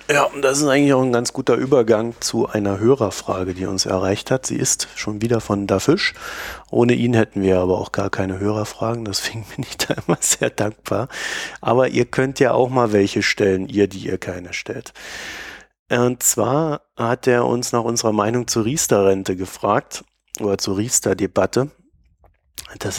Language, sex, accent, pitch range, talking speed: German, male, German, 100-120 Hz, 175 wpm